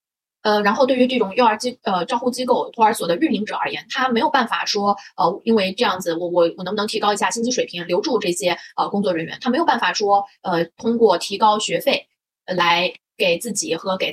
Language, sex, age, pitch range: Chinese, female, 20-39, 185-235 Hz